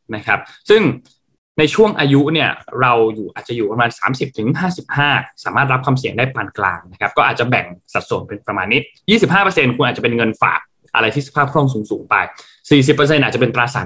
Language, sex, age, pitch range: Thai, male, 20-39, 125-155 Hz